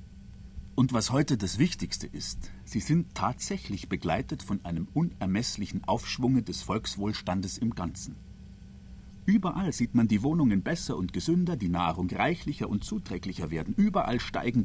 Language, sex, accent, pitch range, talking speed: German, male, German, 95-130 Hz, 140 wpm